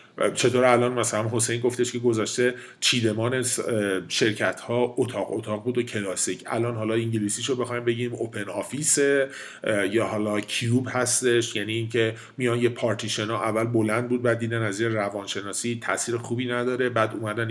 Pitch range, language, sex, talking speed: 115-130 Hz, Persian, male, 155 wpm